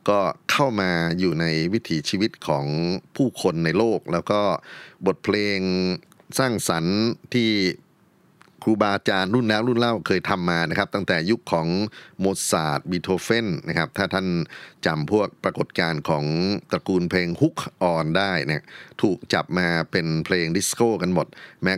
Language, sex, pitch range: Thai, male, 80-100 Hz